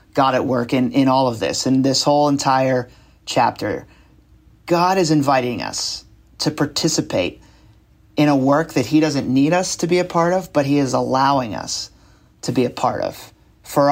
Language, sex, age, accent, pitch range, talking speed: English, male, 30-49, American, 125-150 Hz, 185 wpm